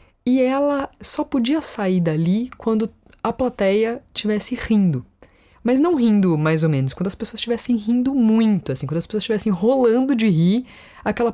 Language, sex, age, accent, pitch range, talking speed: Portuguese, female, 20-39, Brazilian, 195-250 Hz, 170 wpm